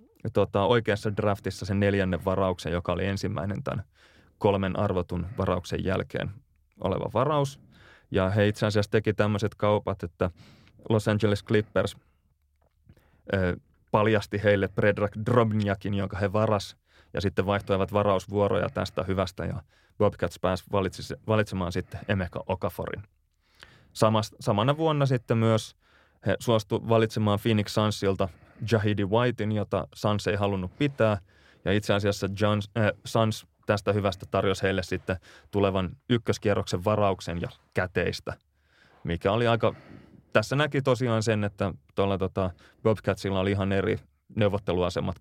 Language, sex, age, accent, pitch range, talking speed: Finnish, male, 30-49, native, 95-110 Hz, 125 wpm